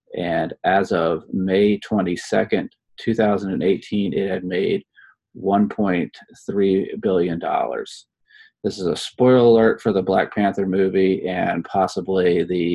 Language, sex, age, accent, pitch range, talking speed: English, male, 30-49, American, 100-115 Hz, 115 wpm